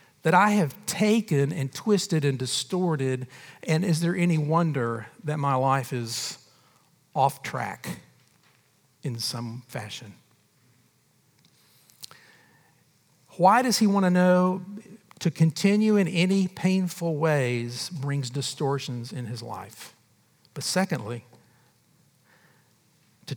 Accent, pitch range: American, 130-165 Hz